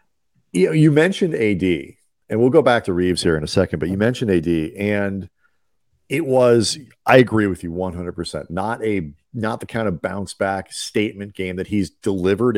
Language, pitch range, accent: English, 90-110 Hz, American